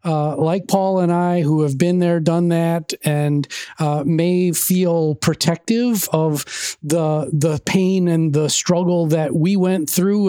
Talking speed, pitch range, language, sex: 155 wpm, 150-175 Hz, English, male